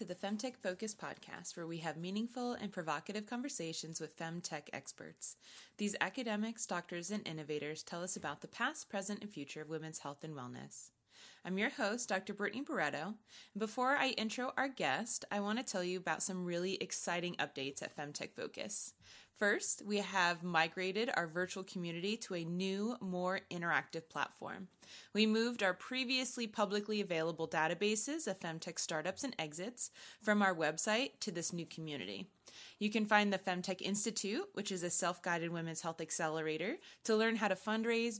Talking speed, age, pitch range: 170 wpm, 20-39, 170-215 Hz